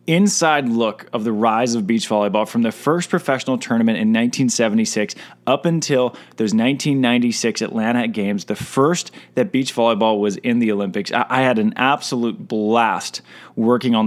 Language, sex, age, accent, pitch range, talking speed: English, male, 20-39, American, 110-130 Hz, 160 wpm